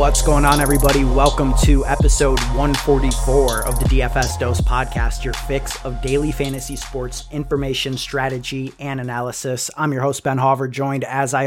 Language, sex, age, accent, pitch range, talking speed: English, male, 20-39, American, 130-140 Hz, 160 wpm